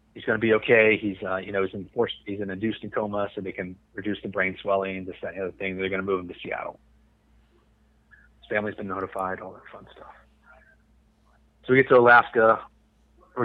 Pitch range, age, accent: 95-105 Hz, 30-49, American